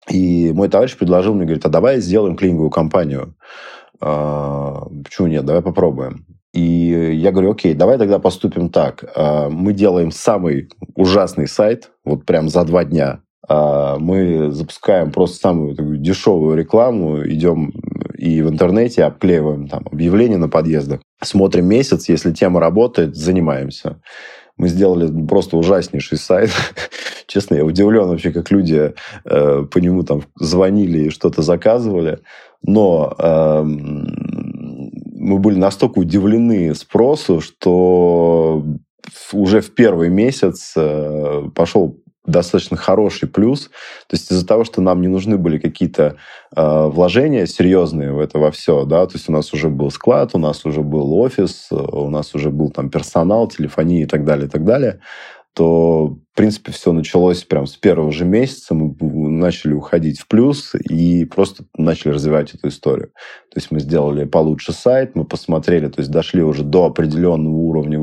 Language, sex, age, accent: Russian, male, 20-39, native